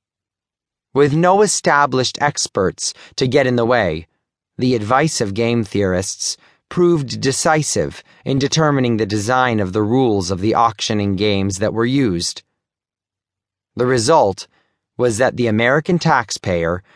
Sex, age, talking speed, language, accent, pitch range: male, 30-49, 130 wpm, English, American, 100-135 Hz